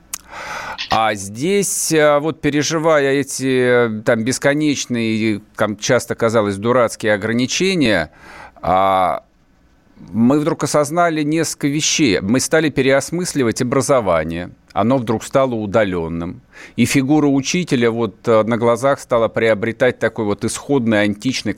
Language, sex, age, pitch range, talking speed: Russian, male, 50-69, 105-150 Hz, 90 wpm